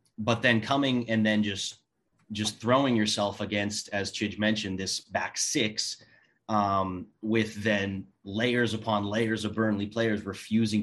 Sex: male